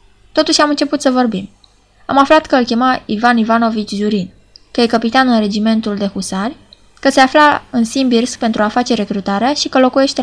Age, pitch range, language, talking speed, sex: 20-39, 205-275 Hz, Romanian, 190 wpm, female